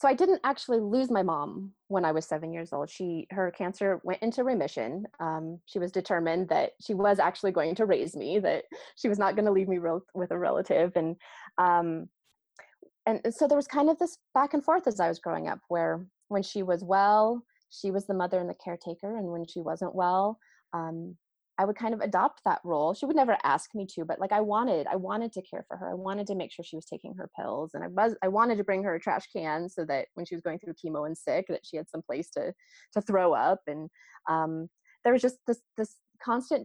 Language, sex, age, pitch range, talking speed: English, female, 20-39, 170-220 Hz, 245 wpm